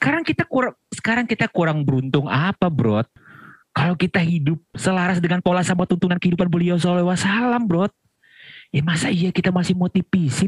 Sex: male